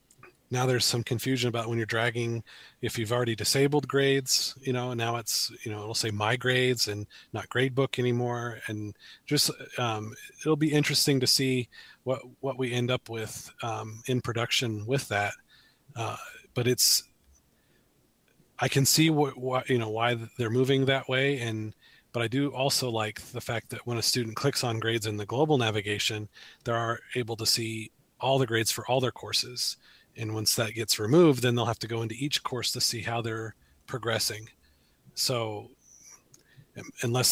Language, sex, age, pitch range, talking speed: English, male, 30-49, 110-130 Hz, 180 wpm